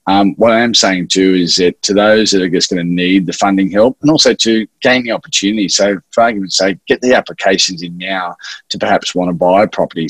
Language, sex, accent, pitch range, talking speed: English, male, Australian, 85-100 Hz, 245 wpm